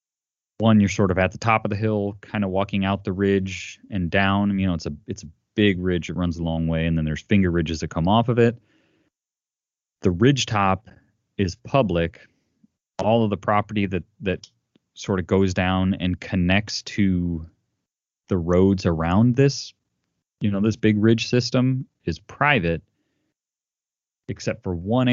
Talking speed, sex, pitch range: 175 wpm, male, 85-105 Hz